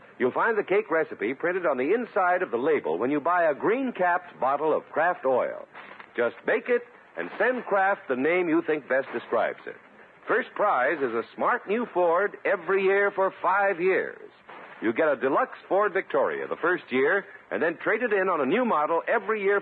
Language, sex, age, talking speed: English, male, 60-79, 200 wpm